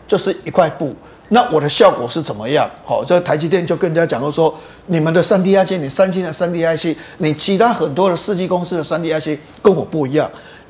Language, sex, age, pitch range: Chinese, male, 50-69, 150-195 Hz